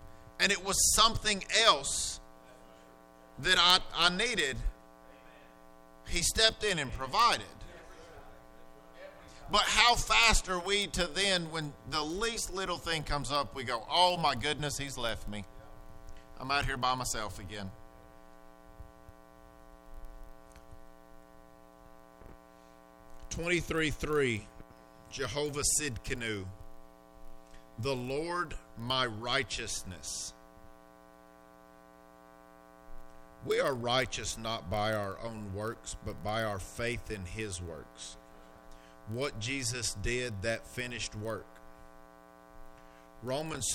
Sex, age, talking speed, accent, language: male, 50-69, 100 wpm, American, English